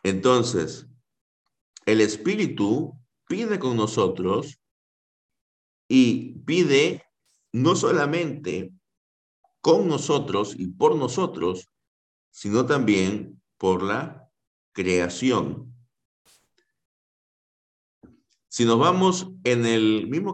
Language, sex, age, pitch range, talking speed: Spanish, male, 50-69, 95-125 Hz, 75 wpm